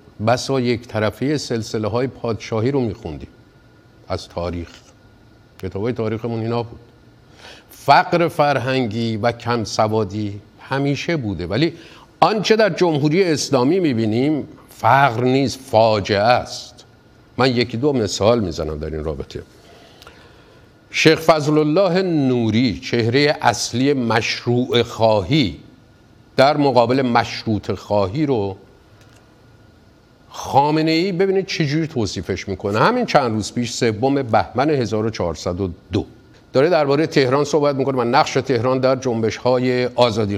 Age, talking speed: 50-69, 115 wpm